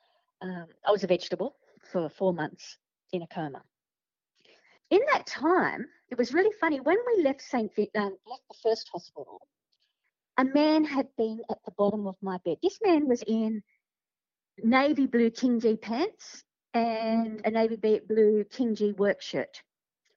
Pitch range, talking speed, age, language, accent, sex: 200-265 Hz, 160 wpm, 50-69, English, Australian, female